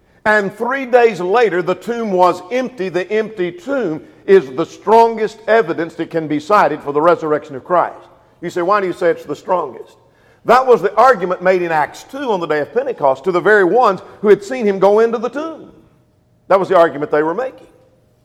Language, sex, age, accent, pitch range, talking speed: English, male, 50-69, American, 180-245 Hz, 215 wpm